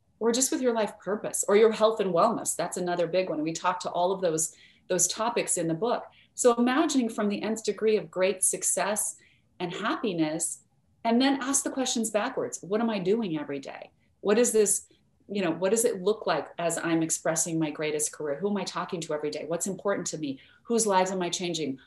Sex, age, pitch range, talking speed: female, 30-49, 170-210 Hz, 220 wpm